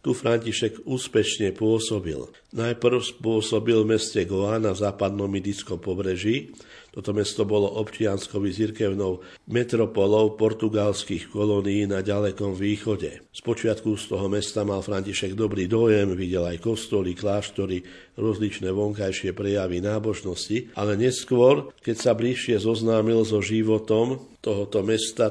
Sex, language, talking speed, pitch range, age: male, Slovak, 115 wpm, 100-110 Hz, 50-69